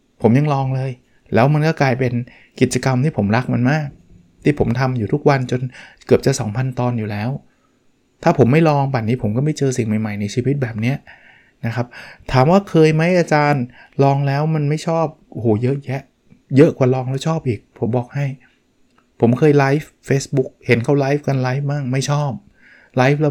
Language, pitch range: Thai, 125-145 Hz